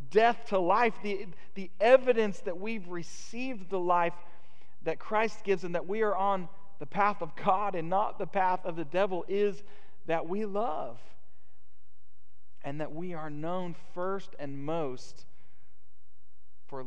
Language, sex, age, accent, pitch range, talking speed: English, male, 40-59, American, 120-190 Hz, 155 wpm